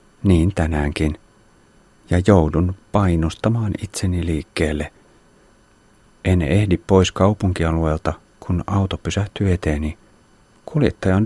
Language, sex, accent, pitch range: Finnish, male, native, 80-105 Hz